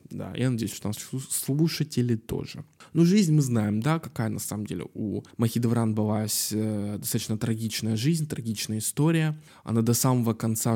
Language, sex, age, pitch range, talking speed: Russian, male, 20-39, 105-130 Hz, 160 wpm